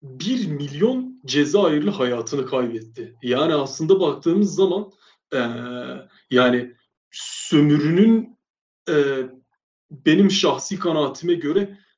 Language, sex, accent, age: Turkish, male, native, 40-59